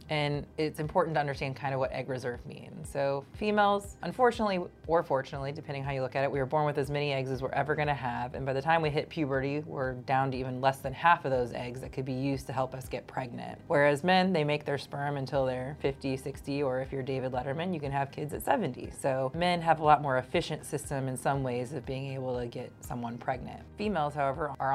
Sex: female